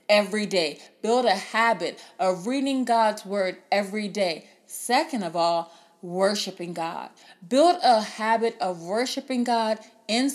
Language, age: English, 30-49